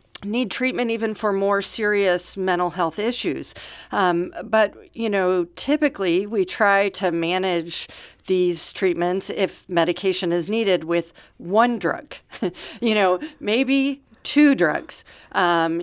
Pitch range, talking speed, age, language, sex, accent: 170-220 Hz, 125 wpm, 50-69, English, female, American